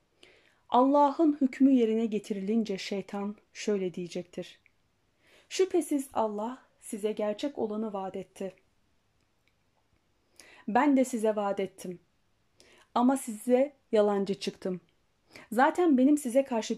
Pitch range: 195-260 Hz